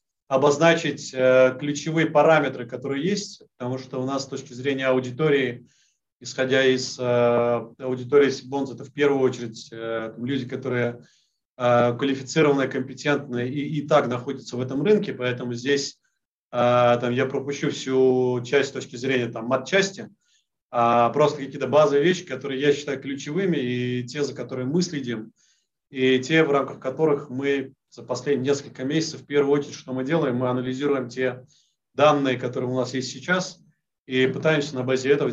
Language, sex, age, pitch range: Russian, male, 30-49, 125-145 Hz